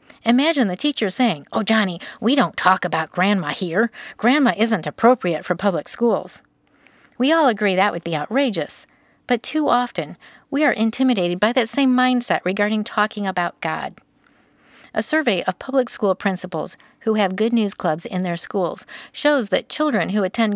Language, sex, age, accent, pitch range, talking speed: English, female, 50-69, American, 180-235 Hz, 170 wpm